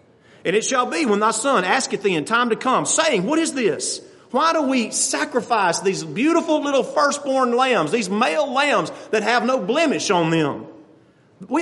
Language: English